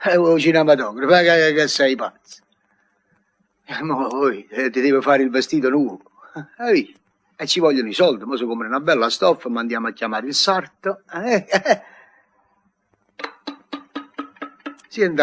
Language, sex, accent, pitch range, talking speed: Italian, male, native, 120-165 Hz, 125 wpm